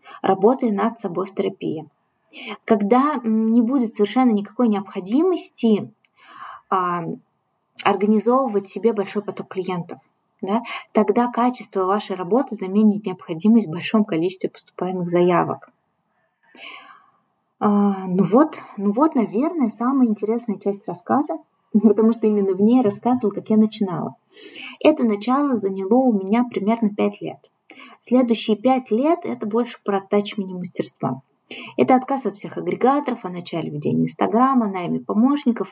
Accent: native